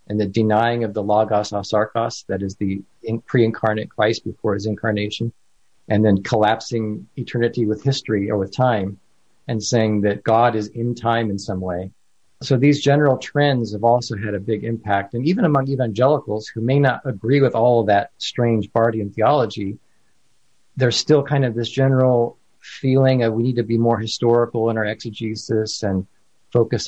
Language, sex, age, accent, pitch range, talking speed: English, male, 40-59, American, 105-125 Hz, 175 wpm